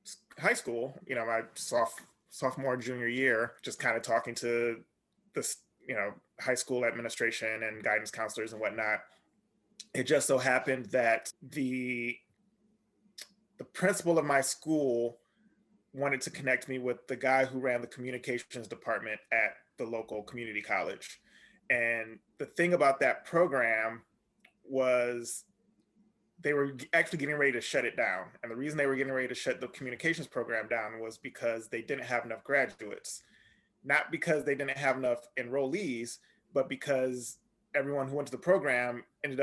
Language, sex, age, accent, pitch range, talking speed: English, male, 20-39, American, 120-150 Hz, 160 wpm